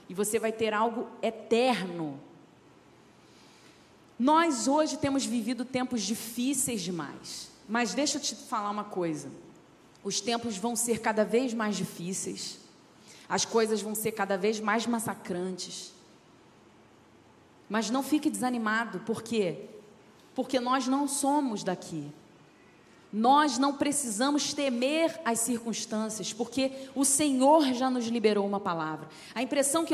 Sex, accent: female, Brazilian